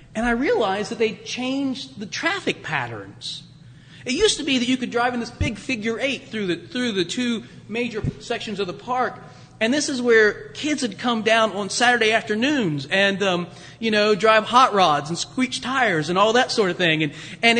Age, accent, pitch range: 30-49, American, 200-265 Hz